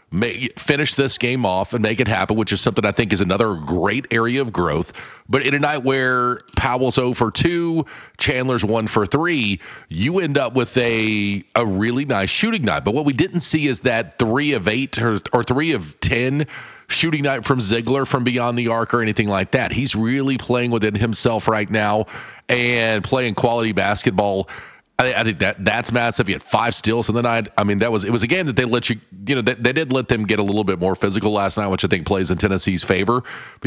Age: 40-59